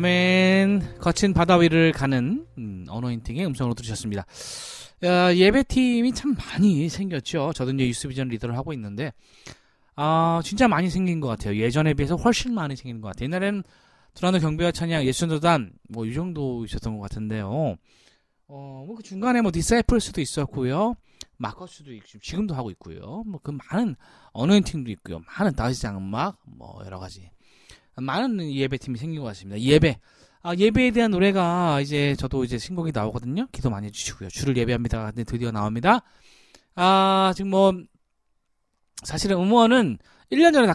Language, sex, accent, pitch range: Korean, male, native, 110-180 Hz